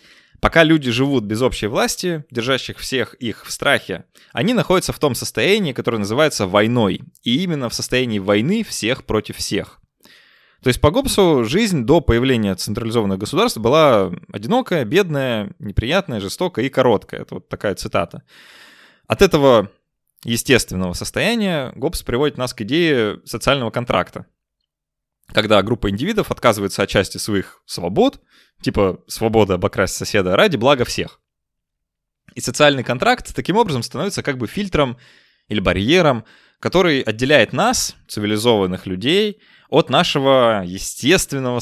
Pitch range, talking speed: 105-150 Hz, 135 wpm